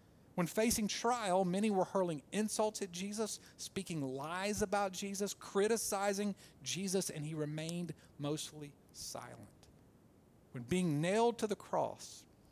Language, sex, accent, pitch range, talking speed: English, male, American, 140-185 Hz, 125 wpm